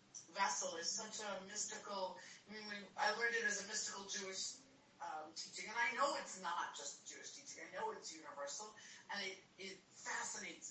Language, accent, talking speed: English, American, 175 wpm